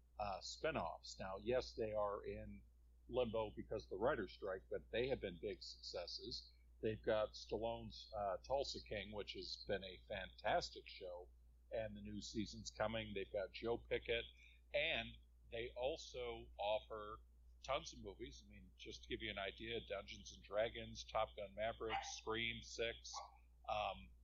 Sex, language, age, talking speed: male, English, 50-69, 160 wpm